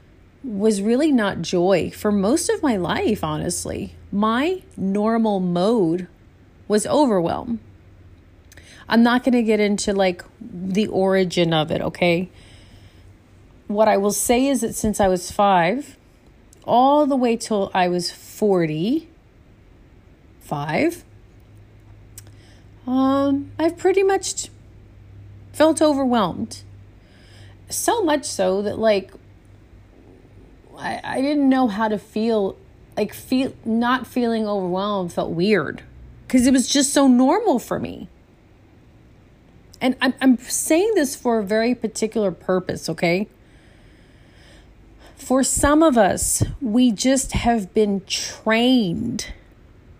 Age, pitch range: 30-49, 155-245 Hz